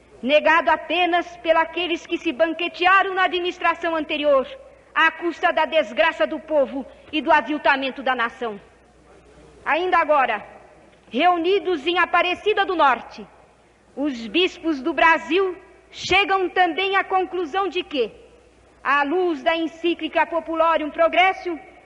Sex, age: female, 40-59